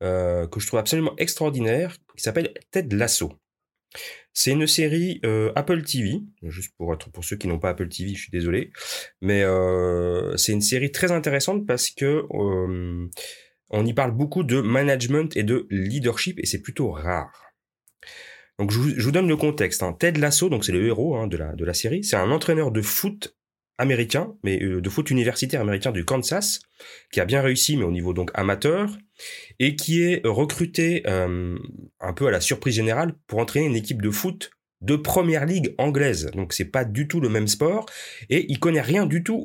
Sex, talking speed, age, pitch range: male, 195 wpm, 30-49, 100-160 Hz